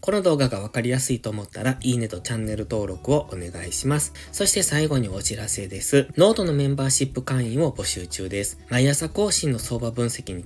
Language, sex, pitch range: Japanese, male, 110-155 Hz